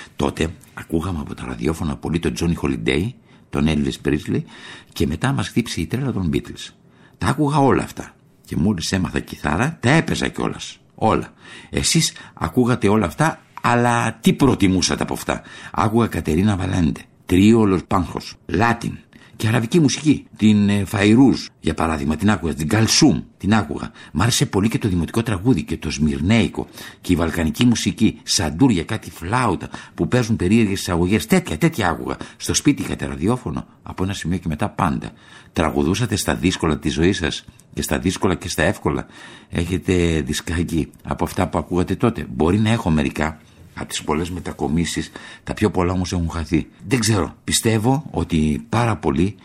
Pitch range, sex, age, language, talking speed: 80-110 Hz, male, 60-79, Greek, 160 wpm